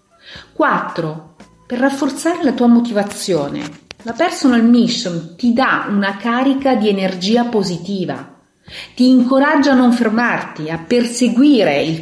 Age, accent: 40-59, native